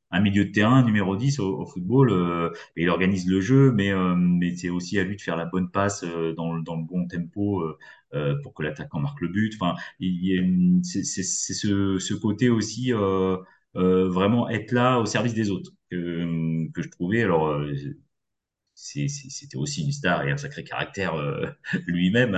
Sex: male